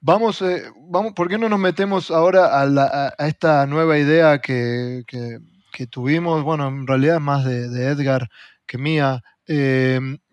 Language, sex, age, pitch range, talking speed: Spanish, male, 20-39, 125-160 Hz, 175 wpm